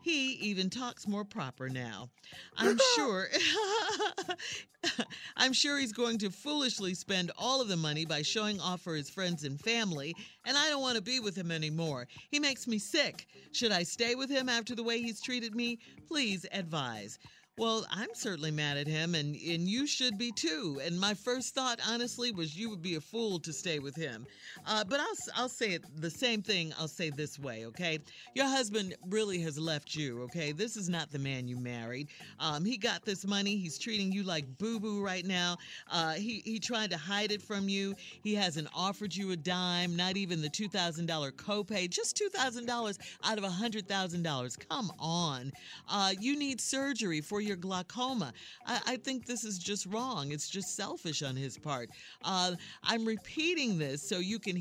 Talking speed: 190 wpm